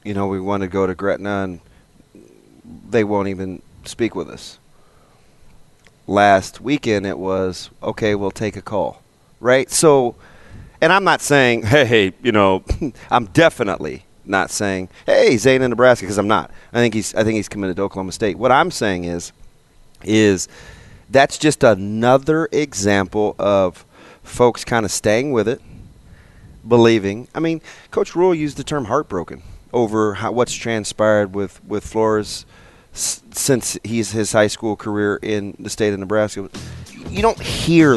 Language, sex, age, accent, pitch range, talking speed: English, male, 30-49, American, 100-130 Hz, 160 wpm